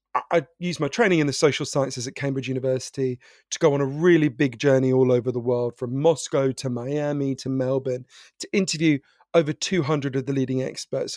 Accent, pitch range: British, 130-170 Hz